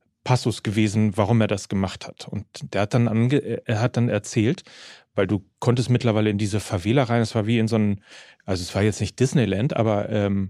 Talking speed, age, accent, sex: 205 wpm, 40-59, German, male